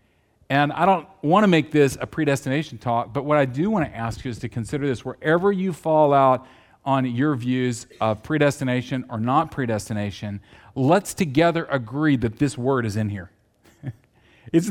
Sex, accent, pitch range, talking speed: male, American, 120-165 Hz, 180 wpm